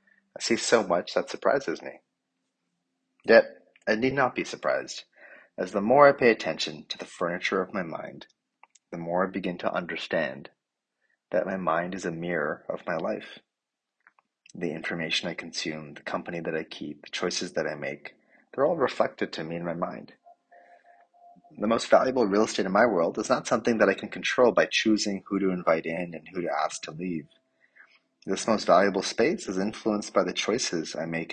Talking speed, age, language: 190 wpm, 30-49, English